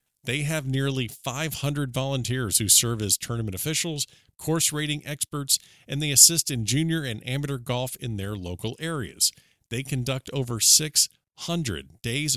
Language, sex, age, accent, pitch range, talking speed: English, male, 50-69, American, 110-150 Hz, 145 wpm